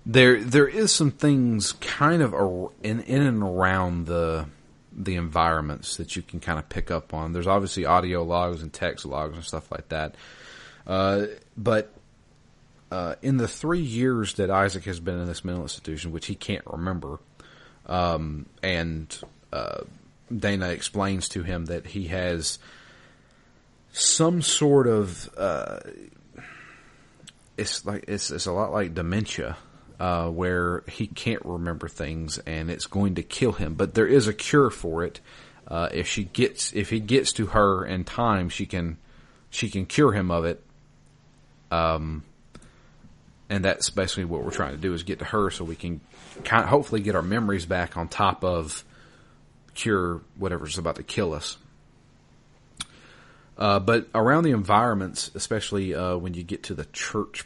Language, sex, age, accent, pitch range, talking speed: English, male, 30-49, American, 85-105 Hz, 165 wpm